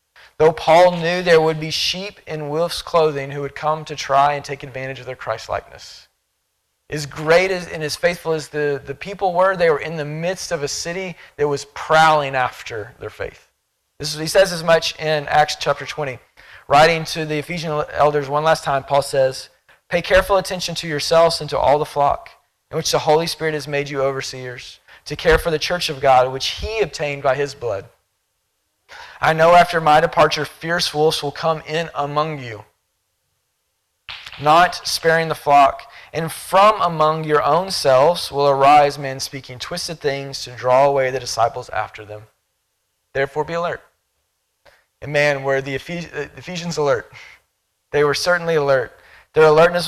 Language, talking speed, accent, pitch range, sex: English, 180 wpm, American, 140-165 Hz, male